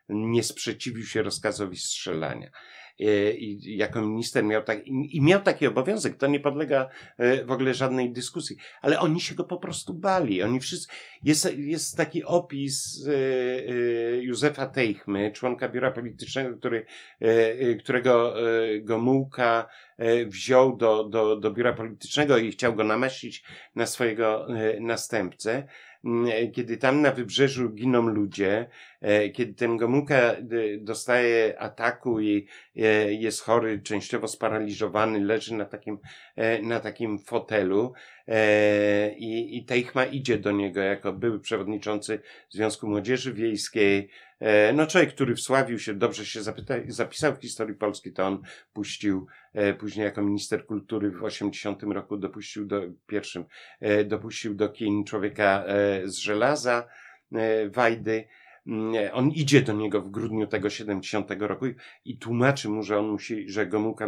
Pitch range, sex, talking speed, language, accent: 105-125 Hz, male, 135 wpm, Polish, native